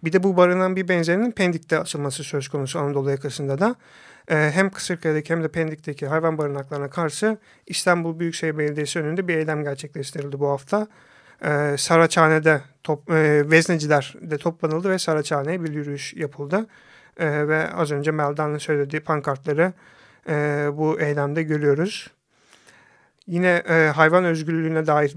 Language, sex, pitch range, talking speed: Turkish, male, 145-170 Hz, 140 wpm